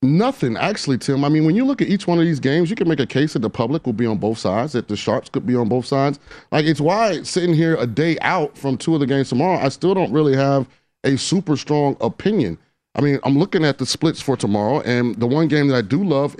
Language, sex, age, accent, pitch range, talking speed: English, male, 30-49, American, 125-155 Hz, 275 wpm